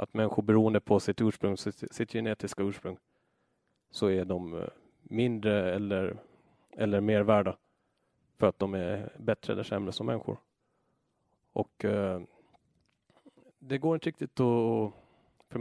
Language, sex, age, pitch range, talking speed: Swedish, male, 30-49, 100-110 Hz, 125 wpm